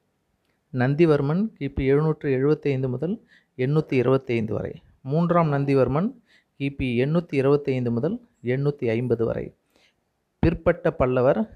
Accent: native